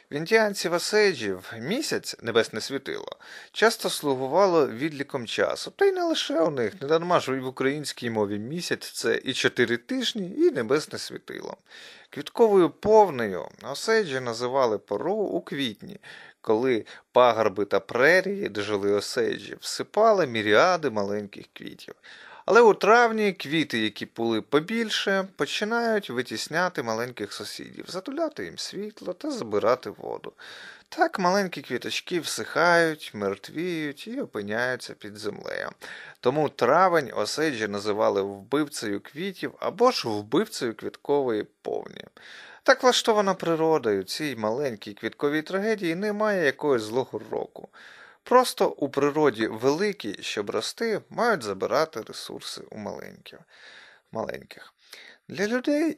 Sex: male